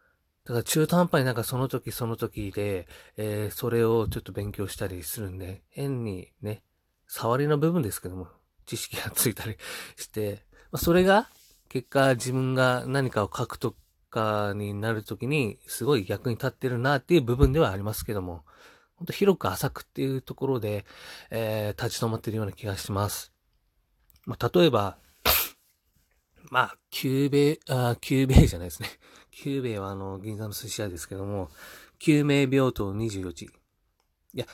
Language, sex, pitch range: Japanese, male, 100-130 Hz